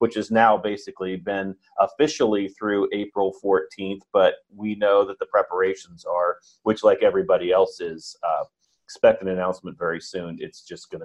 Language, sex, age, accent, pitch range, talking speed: English, male, 40-59, American, 100-155 Hz, 165 wpm